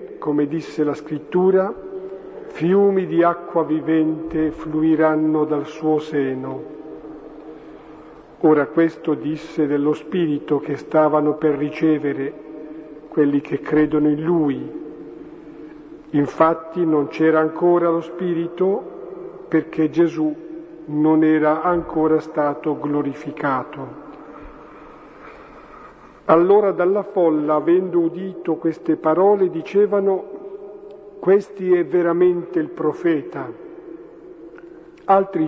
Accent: native